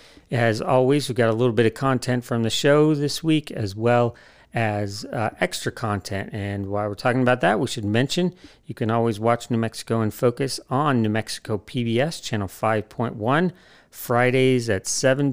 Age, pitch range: 40-59, 110-135 Hz